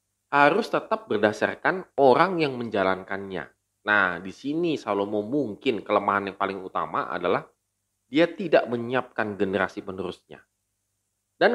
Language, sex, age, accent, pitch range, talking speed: Indonesian, male, 20-39, native, 105-155 Hz, 115 wpm